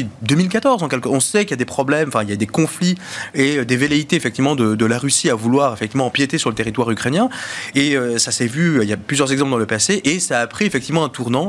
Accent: French